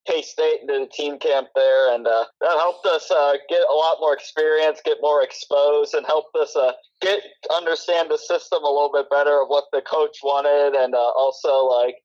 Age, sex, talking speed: 20-39, male, 210 wpm